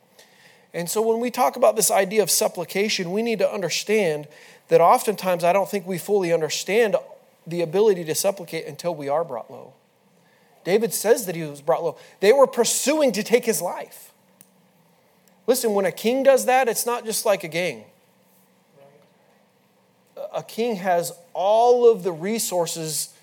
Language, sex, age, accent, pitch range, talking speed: English, male, 30-49, American, 155-215 Hz, 165 wpm